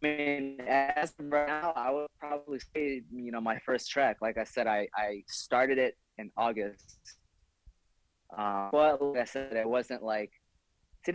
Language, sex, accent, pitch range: English, male, American, 100-125 Hz